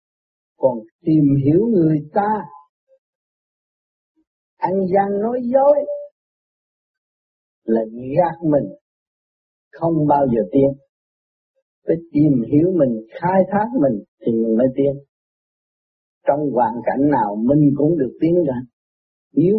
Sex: male